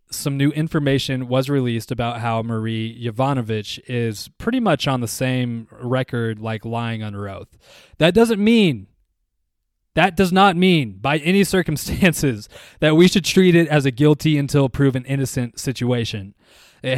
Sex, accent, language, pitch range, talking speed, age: male, American, English, 115-145 Hz, 150 wpm, 20-39